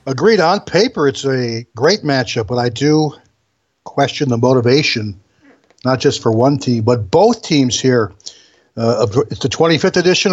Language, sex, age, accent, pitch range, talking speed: English, male, 60-79, American, 125-155 Hz, 155 wpm